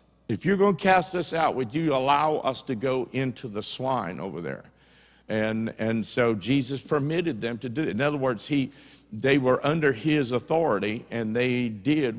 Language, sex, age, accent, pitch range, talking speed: English, male, 50-69, American, 115-150 Hz, 190 wpm